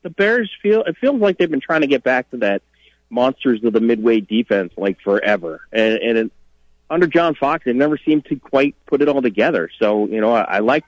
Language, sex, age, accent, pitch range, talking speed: English, male, 30-49, American, 100-135 Hz, 225 wpm